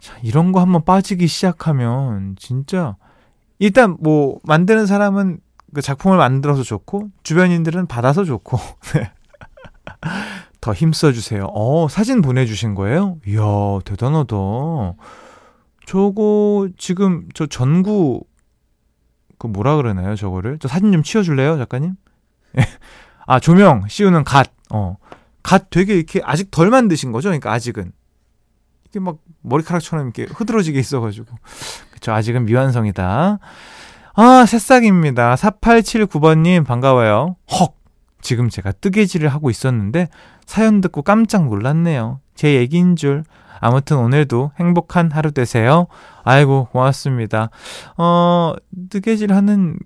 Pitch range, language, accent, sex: 120-185 Hz, Korean, native, male